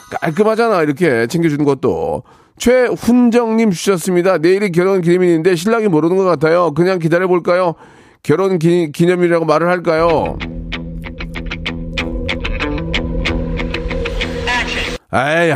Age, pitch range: 40-59, 125-180 Hz